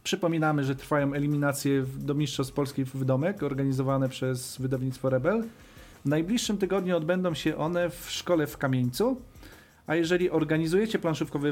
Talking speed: 145 wpm